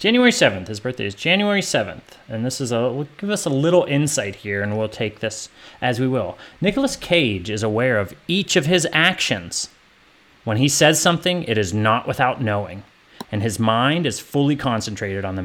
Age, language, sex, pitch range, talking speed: 30-49, English, male, 110-155 Hz, 195 wpm